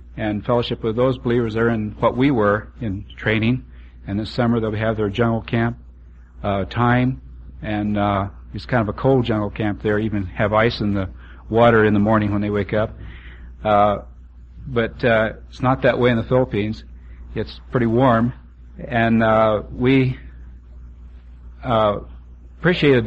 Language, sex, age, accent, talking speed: English, male, 50-69, American, 165 wpm